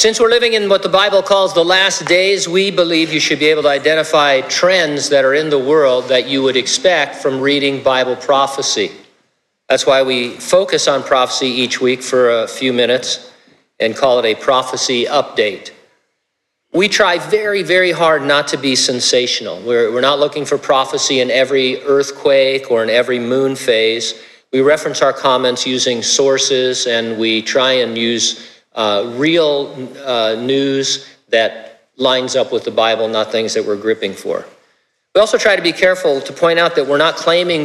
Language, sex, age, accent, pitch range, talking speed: English, male, 50-69, American, 125-165 Hz, 180 wpm